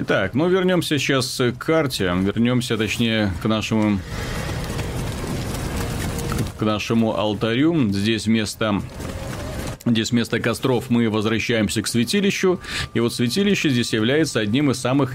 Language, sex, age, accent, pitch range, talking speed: Russian, male, 30-49, native, 105-130 Hz, 125 wpm